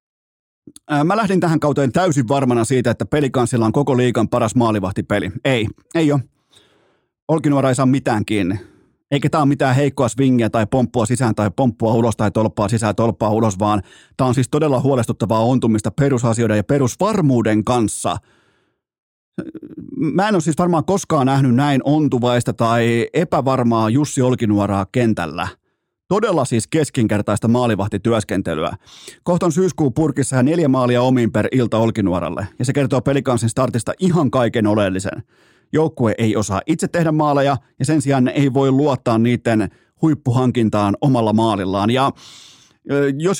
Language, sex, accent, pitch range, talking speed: Finnish, male, native, 115-145 Hz, 140 wpm